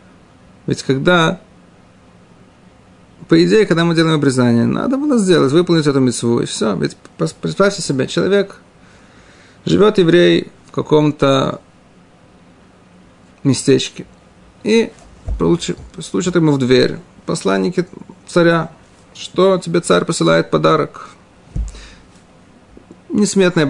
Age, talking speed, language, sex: 40-59, 100 wpm, Russian, male